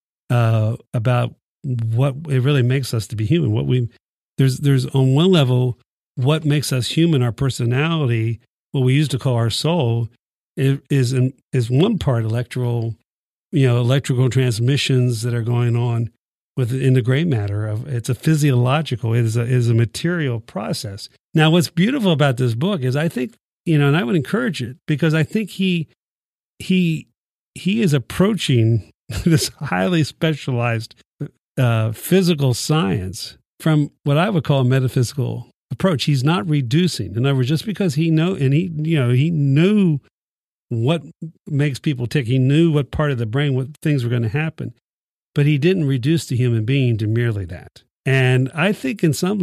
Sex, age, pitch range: male, 50-69, 120-155 Hz